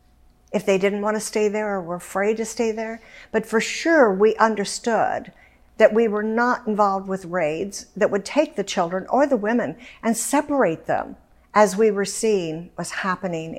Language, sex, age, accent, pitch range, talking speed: English, female, 60-79, American, 180-225 Hz, 180 wpm